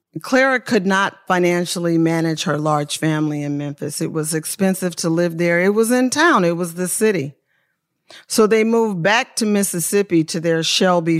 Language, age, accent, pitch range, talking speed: English, 40-59, American, 160-195 Hz, 175 wpm